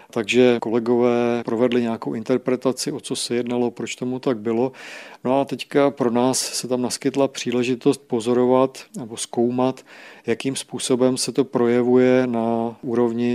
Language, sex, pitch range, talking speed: Czech, male, 115-125 Hz, 145 wpm